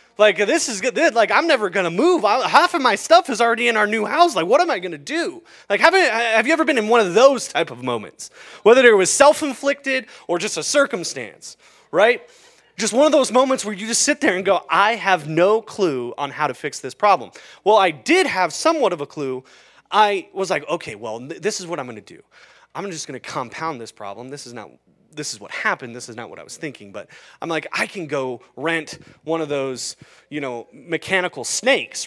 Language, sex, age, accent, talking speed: English, male, 20-39, American, 245 wpm